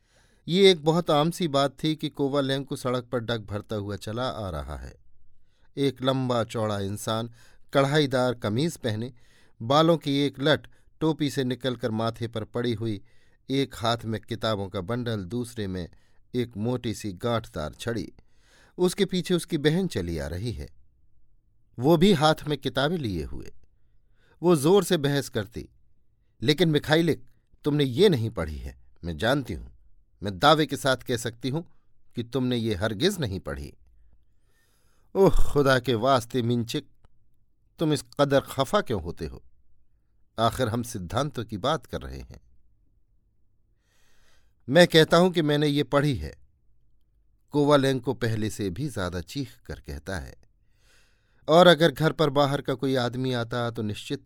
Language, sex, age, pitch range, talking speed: Hindi, male, 50-69, 105-140 Hz, 160 wpm